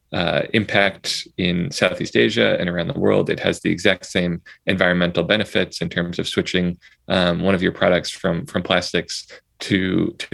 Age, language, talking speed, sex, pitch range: 20-39, English, 175 wpm, male, 90-110 Hz